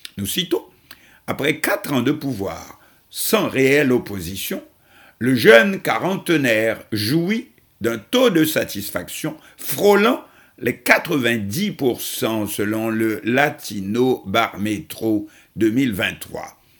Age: 60-79